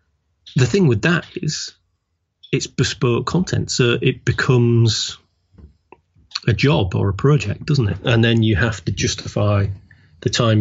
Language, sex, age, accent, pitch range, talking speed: English, male, 30-49, British, 95-125 Hz, 145 wpm